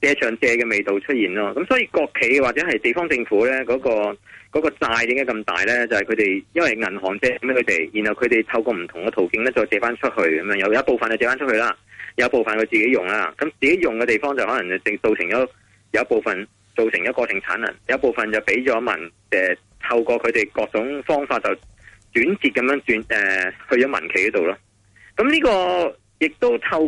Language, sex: Chinese, male